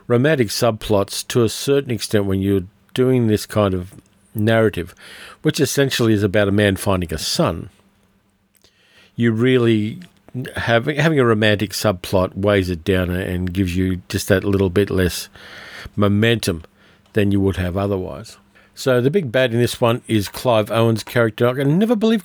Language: English